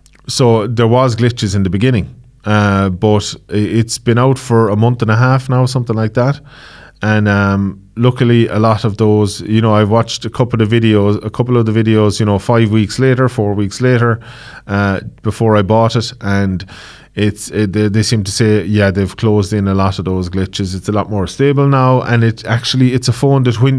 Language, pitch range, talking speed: English, 105-125 Hz, 215 wpm